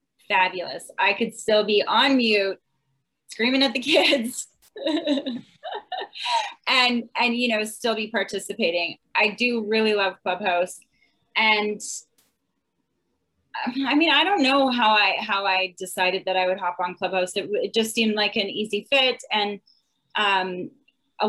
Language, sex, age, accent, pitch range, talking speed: English, female, 30-49, American, 200-245 Hz, 145 wpm